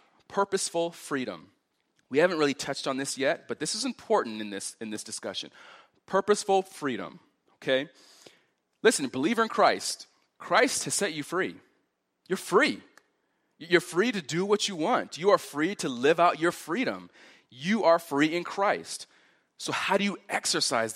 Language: English